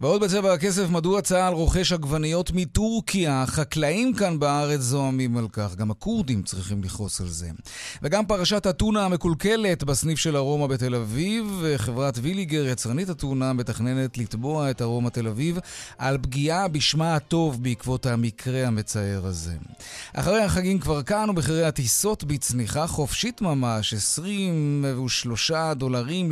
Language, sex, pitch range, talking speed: Hebrew, male, 125-170 Hz, 130 wpm